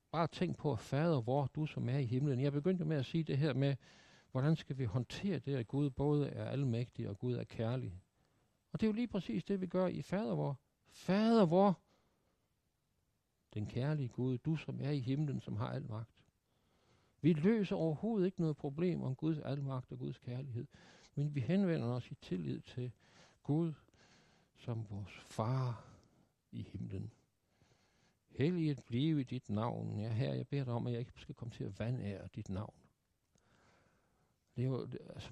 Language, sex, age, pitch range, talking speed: Danish, male, 60-79, 120-160 Hz, 185 wpm